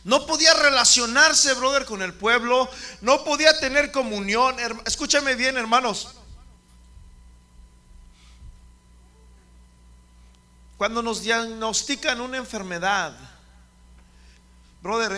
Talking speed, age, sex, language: 80 wpm, 40-59, male, Spanish